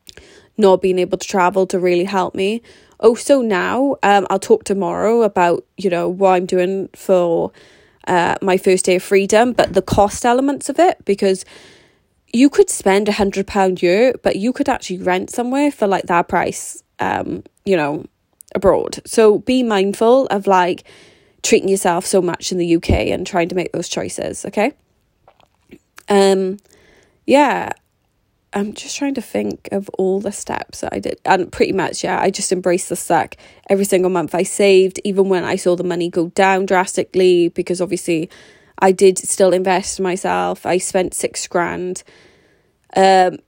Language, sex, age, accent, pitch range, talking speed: English, female, 20-39, British, 180-205 Hz, 175 wpm